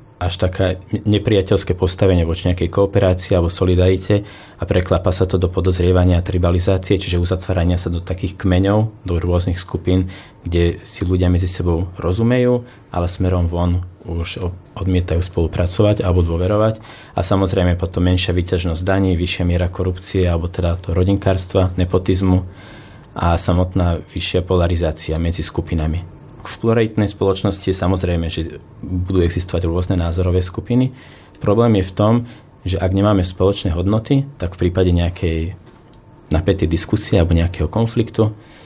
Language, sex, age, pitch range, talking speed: Slovak, male, 20-39, 90-105 Hz, 135 wpm